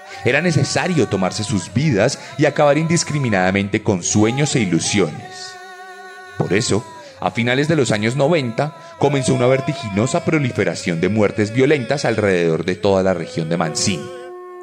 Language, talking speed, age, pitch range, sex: Spanish, 140 wpm, 30-49, 100-160 Hz, male